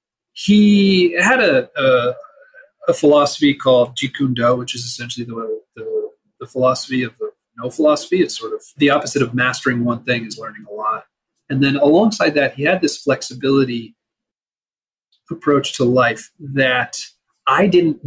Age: 40-59